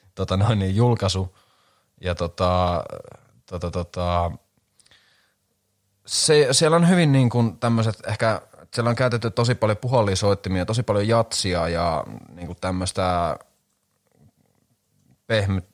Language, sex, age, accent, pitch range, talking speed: Finnish, male, 30-49, native, 90-115 Hz, 120 wpm